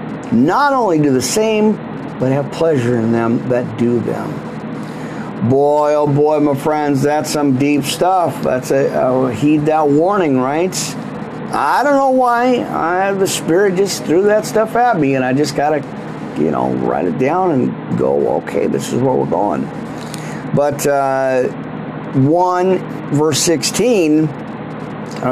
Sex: male